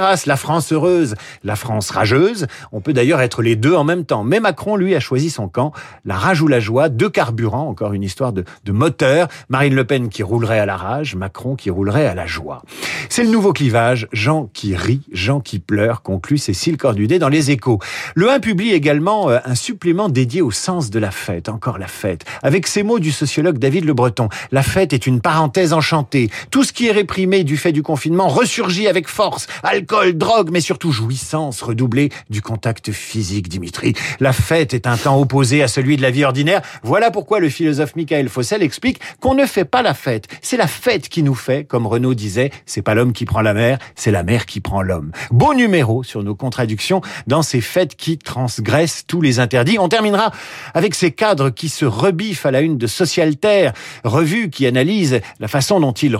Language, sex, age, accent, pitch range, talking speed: French, male, 50-69, French, 120-170 Hz, 210 wpm